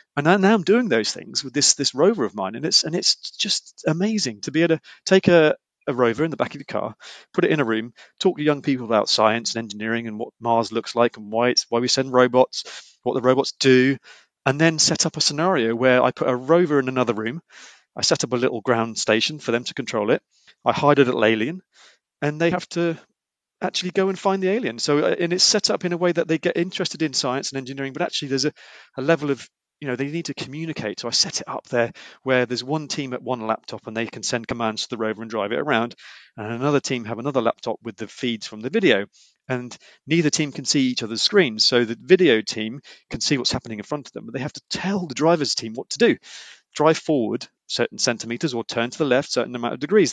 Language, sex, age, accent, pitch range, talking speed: English, male, 30-49, British, 115-160 Hz, 255 wpm